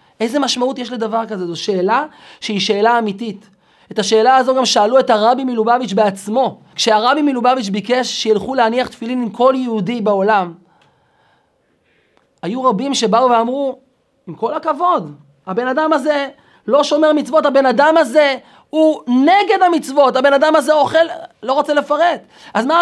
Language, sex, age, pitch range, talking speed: Hebrew, male, 30-49, 210-275 Hz, 150 wpm